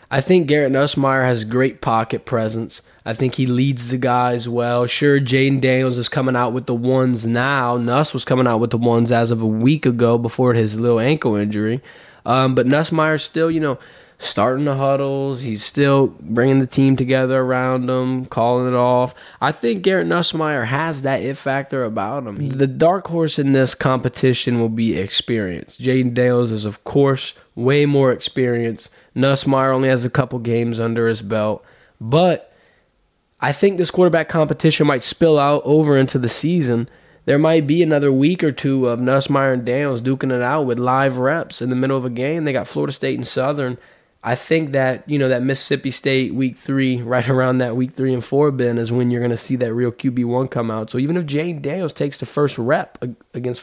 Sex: male